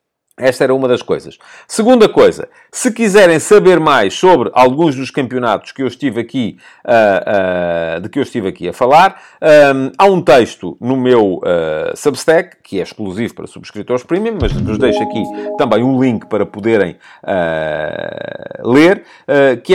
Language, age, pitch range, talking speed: English, 50-69, 115-155 Hz, 165 wpm